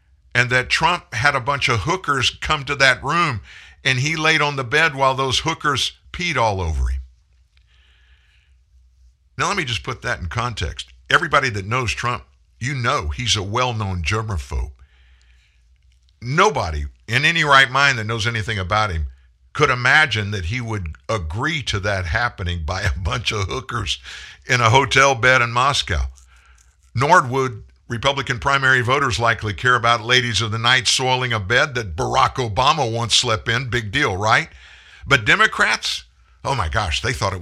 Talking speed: 170 wpm